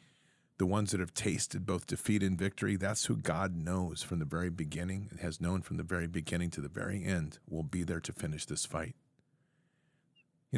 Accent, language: American, English